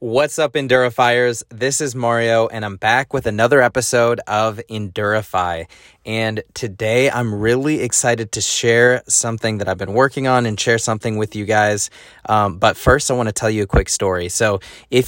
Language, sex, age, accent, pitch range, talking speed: English, male, 20-39, American, 100-120 Hz, 185 wpm